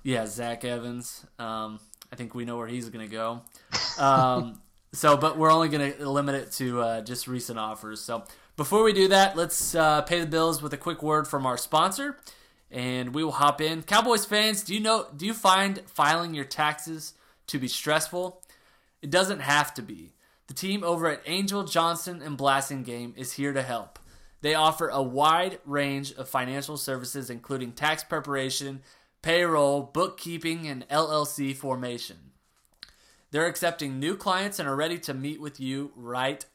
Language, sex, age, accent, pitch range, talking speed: English, male, 20-39, American, 125-165 Hz, 180 wpm